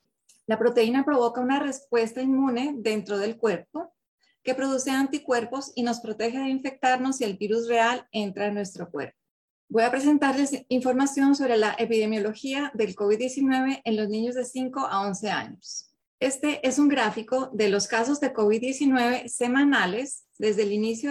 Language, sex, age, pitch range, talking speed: English, female, 30-49, 220-265 Hz, 155 wpm